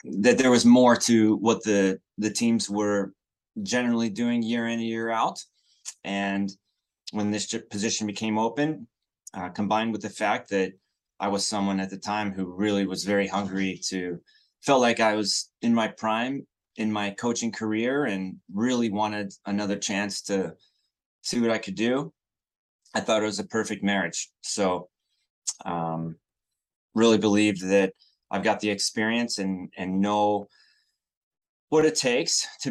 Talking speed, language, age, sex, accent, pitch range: 160 wpm, English, 30-49, male, American, 100-120 Hz